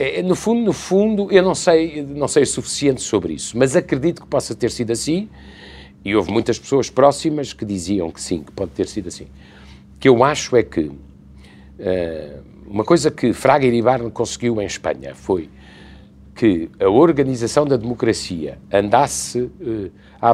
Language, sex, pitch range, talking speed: Portuguese, male, 100-150 Hz, 170 wpm